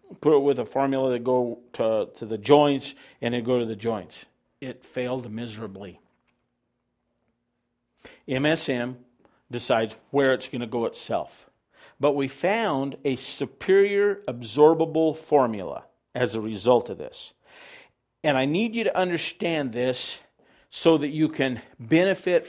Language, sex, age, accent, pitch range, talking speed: English, male, 50-69, American, 120-150 Hz, 140 wpm